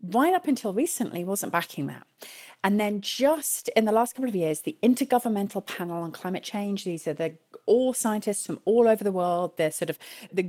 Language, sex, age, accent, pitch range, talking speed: English, female, 30-49, British, 175-235 Hz, 205 wpm